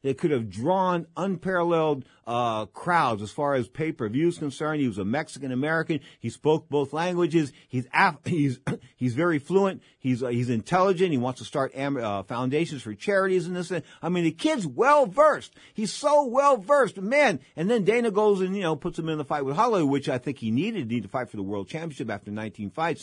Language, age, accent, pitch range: English, 50-69, American, 125-185 Hz